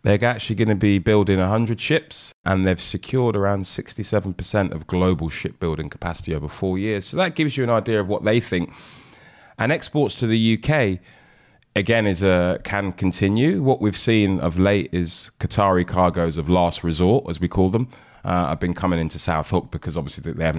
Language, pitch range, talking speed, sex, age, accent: English, 80-105 Hz, 190 wpm, male, 20-39, British